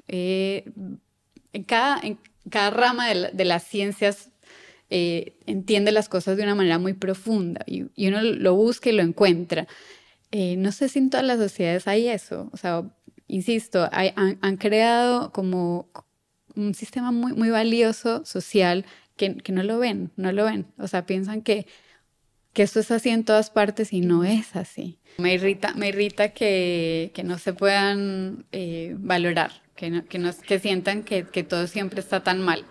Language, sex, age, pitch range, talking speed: Spanish, female, 20-39, 185-225 Hz, 180 wpm